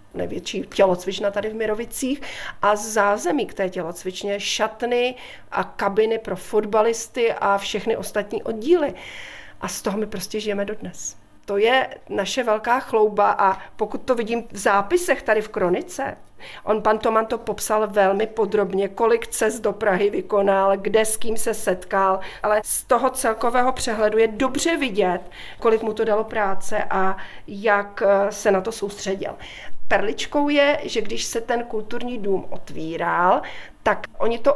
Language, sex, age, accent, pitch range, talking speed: Czech, female, 40-59, native, 195-230 Hz, 150 wpm